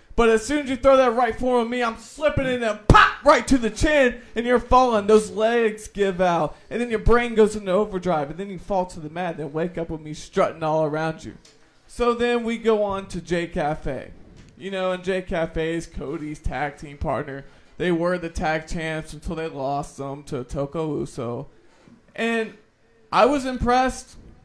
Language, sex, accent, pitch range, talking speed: English, male, American, 160-215 Hz, 205 wpm